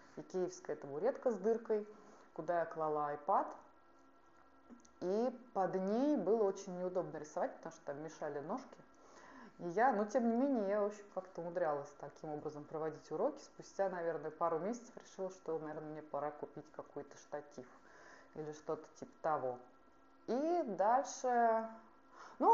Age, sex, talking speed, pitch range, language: 20-39, female, 145 wpm, 165-245 Hz, Russian